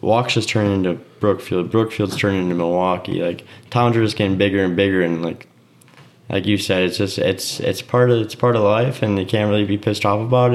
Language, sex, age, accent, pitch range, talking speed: English, male, 20-39, American, 90-105 Hz, 230 wpm